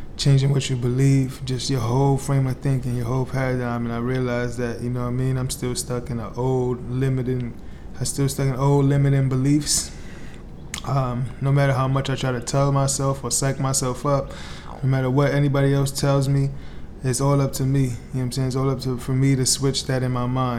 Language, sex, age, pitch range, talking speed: English, male, 20-39, 120-135 Hz, 240 wpm